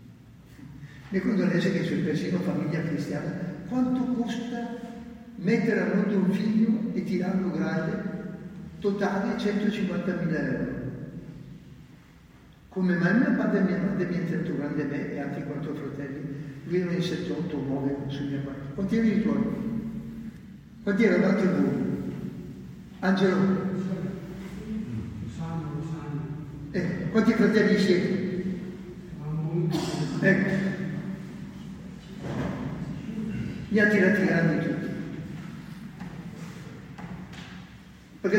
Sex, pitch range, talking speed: male, 145-200 Hz, 105 wpm